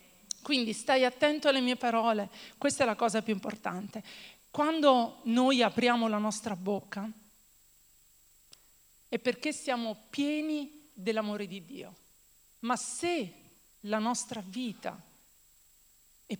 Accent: native